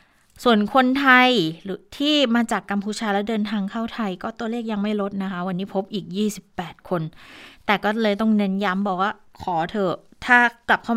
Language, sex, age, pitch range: Thai, female, 20-39, 180-215 Hz